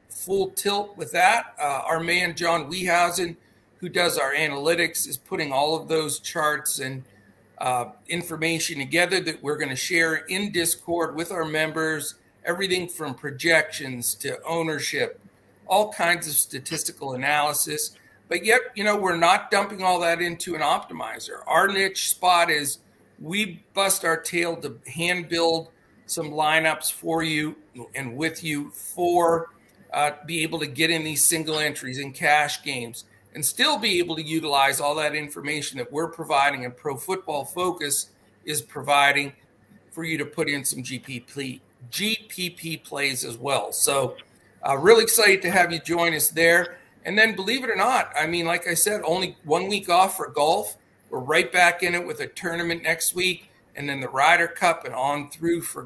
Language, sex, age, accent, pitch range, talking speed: English, male, 50-69, American, 145-175 Hz, 175 wpm